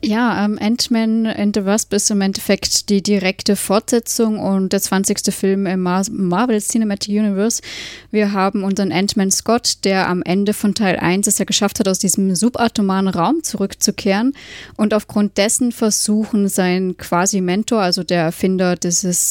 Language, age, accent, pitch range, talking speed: German, 20-39, German, 190-215 Hz, 160 wpm